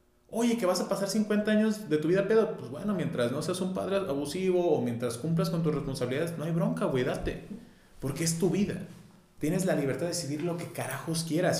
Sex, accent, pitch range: male, Mexican, 115-155 Hz